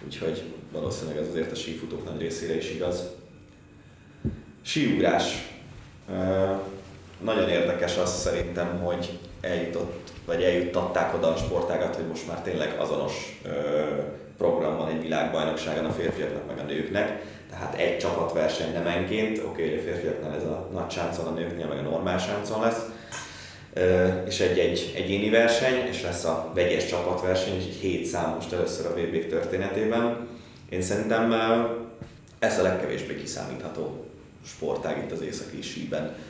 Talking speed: 135 wpm